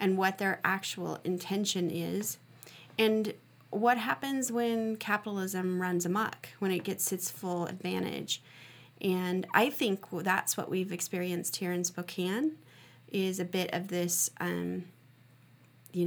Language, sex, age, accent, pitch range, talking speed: English, female, 30-49, American, 160-195 Hz, 135 wpm